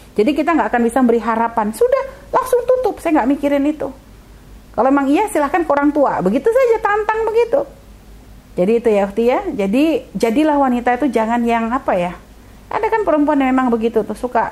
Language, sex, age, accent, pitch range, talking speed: Indonesian, female, 40-59, native, 205-275 Hz, 185 wpm